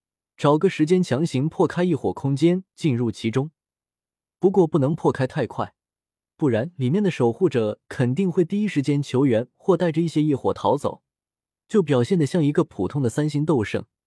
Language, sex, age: Chinese, male, 20-39